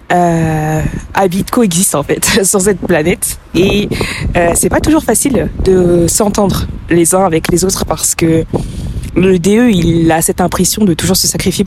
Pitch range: 170-200 Hz